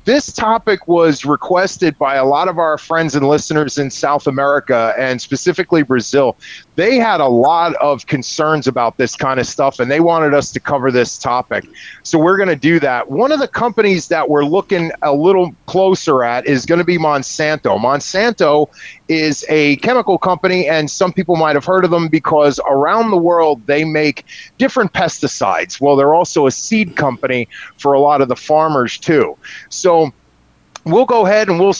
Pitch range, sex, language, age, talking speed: 145-200 Hz, male, English, 30-49, 185 wpm